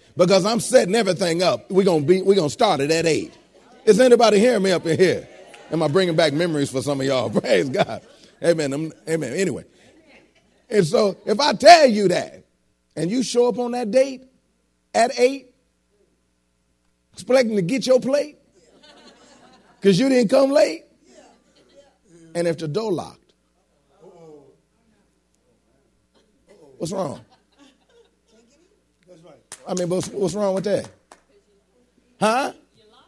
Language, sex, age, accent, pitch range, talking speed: English, male, 40-59, American, 175-280 Hz, 135 wpm